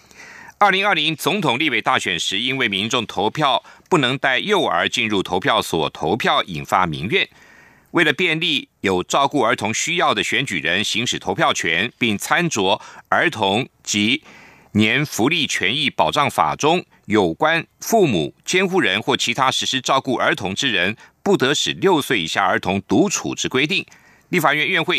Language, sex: German, male